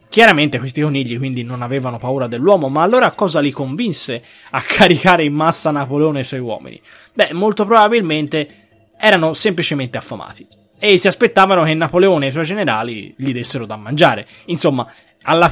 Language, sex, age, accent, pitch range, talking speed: Italian, male, 20-39, native, 130-195 Hz, 165 wpm